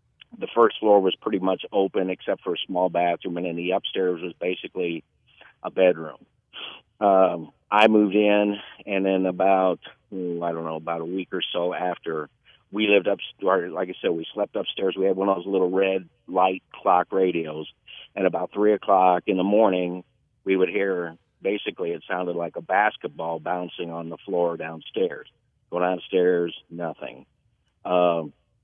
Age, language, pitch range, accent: 50-69, English, 90-105 Hz, American